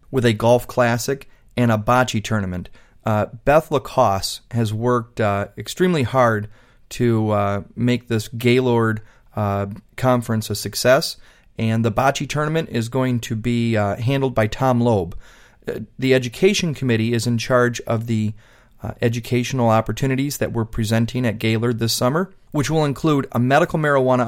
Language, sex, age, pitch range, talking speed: English, male, 30-49, 110-135 Hz, 155 wpm